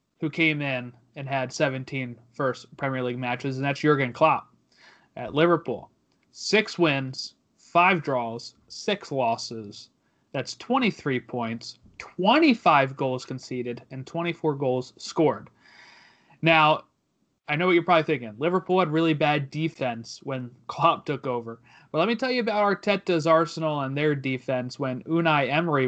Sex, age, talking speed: male, 30-49, 145 wpm